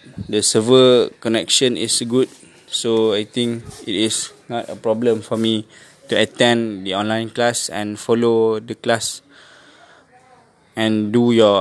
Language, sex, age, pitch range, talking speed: English, male, 20-39, 105-115 Hz, 140 wpm